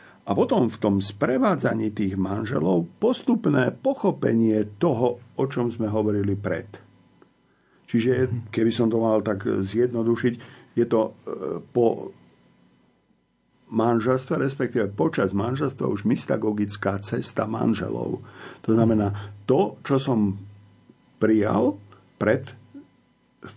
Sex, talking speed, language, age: male, 105 wpm, Slovak, 50-69